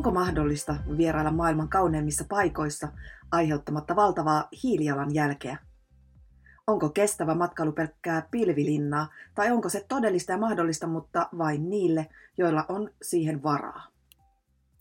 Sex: female